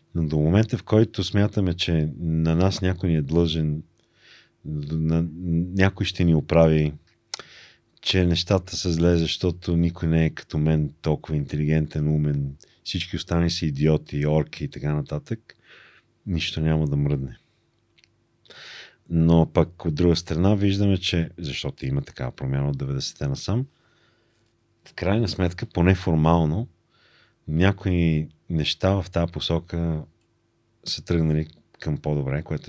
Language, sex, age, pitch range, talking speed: Bulgarian, male, 40-59, 75-95 Hz, 130 wpm